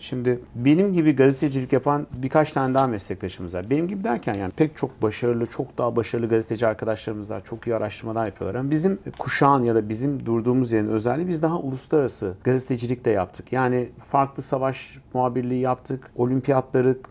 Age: 40-59